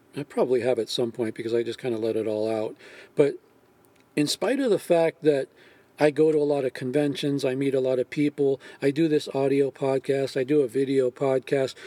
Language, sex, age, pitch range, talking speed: English, male, 40-59, 125-150 Hz, 225 wpm